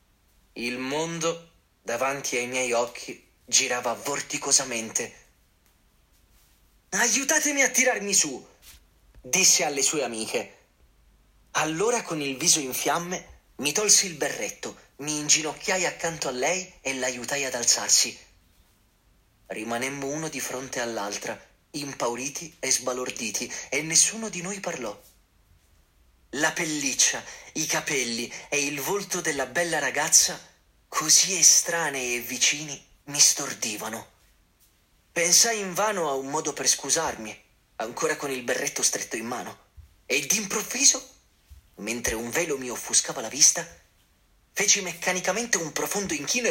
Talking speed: 120 wpm